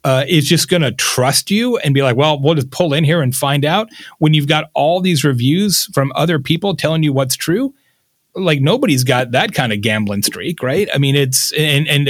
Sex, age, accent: male, 30-49, American